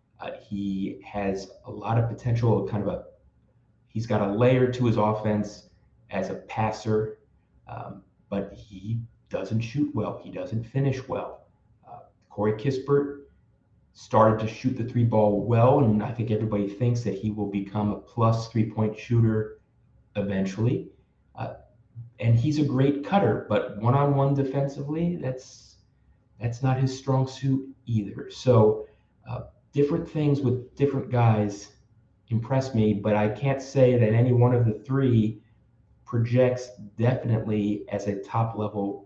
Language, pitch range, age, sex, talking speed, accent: English, 105-125 Hz, 30-49, male, 150 wpm, American